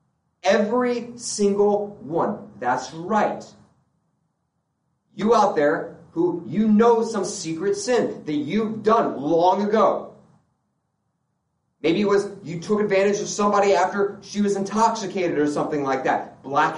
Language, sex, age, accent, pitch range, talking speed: English, male, 30-49, American, 155-235 Hz, 130 wpm